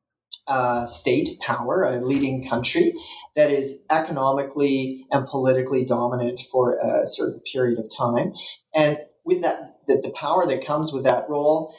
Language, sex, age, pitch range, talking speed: English, male, 40-59, 125-165 Hz, 150 wpm